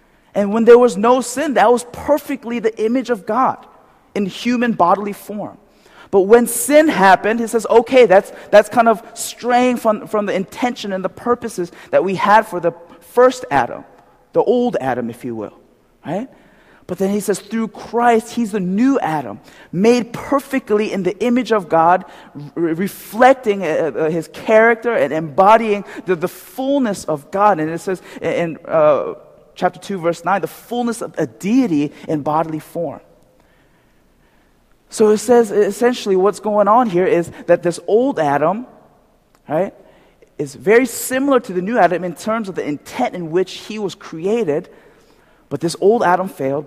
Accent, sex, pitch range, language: American, male, 175-235 Hz, Korean